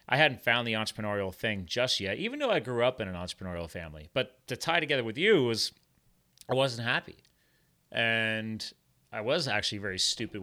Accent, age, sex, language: American, 30-49, male, English